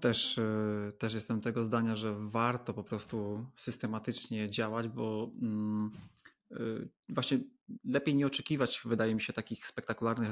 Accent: native